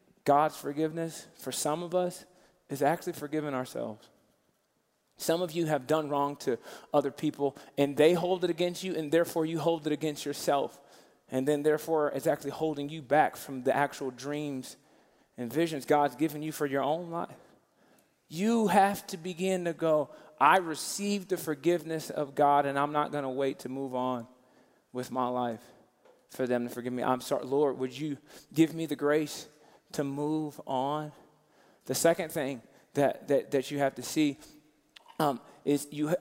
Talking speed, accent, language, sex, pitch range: 175 wpm, American, English, male, 145-175 Hz